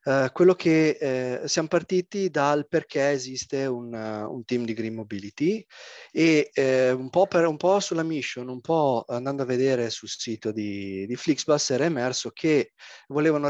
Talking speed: 175 wpm